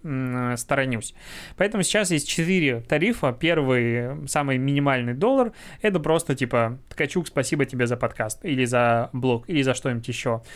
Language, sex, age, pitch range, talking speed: Russian, male, 20-39, 130-150 Hz, 140 wpm